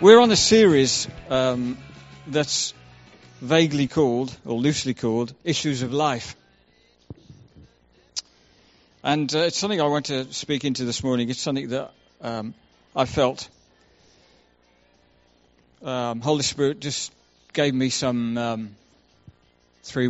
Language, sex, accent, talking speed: English, male, British, 120 wpm